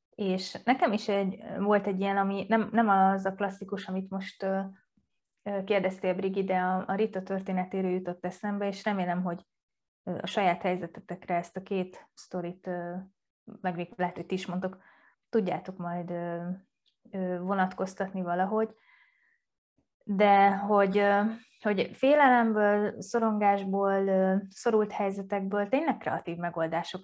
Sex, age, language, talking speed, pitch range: female, 20-39, Hungarian, 120 wpm, 180-210 Hz